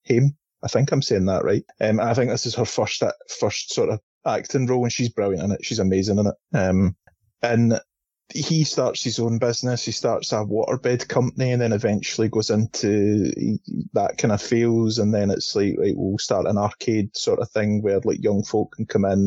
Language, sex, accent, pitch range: English, male, British, 110-135 Hz